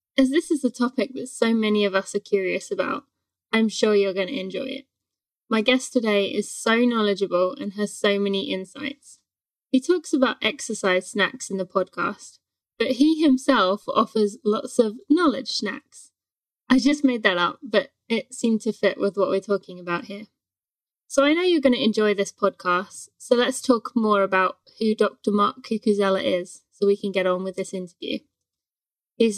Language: English